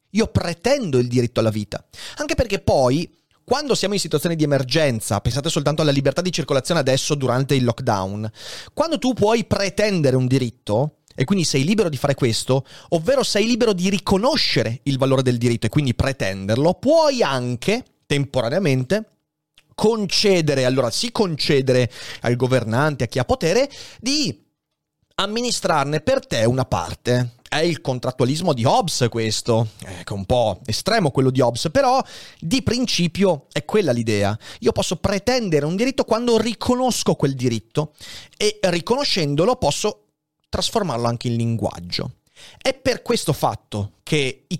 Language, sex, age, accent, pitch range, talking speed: Italian, male, 30-49, native, 120-195 Hz, 150 wpm